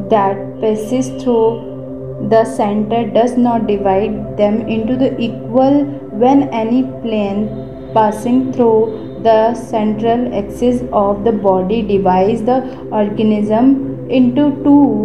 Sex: female